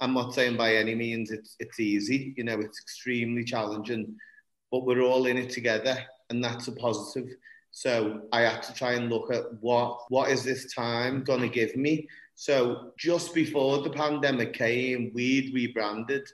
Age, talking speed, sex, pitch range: 30-49, 175 wpm, male, 115-130 Hz